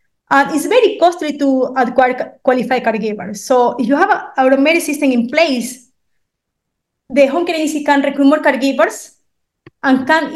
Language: English